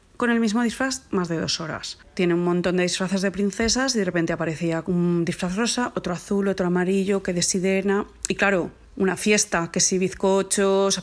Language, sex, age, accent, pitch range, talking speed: Spanish, female, 20-39, Spanish, 175-200 Hz, 200 wpm